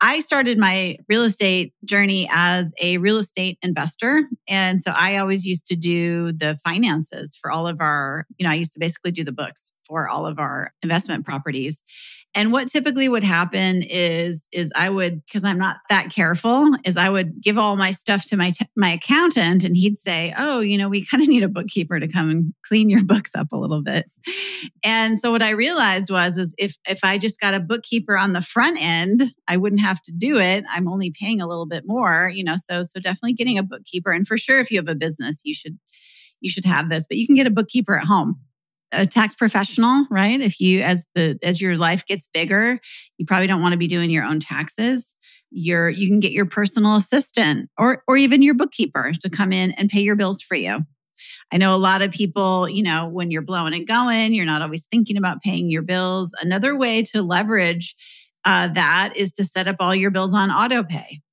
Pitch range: 170-215 Hz